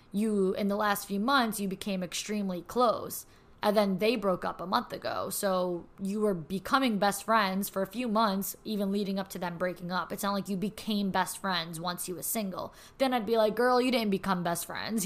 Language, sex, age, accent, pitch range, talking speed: English, female, 20-39, American, 190-225 Hz, 225 wpm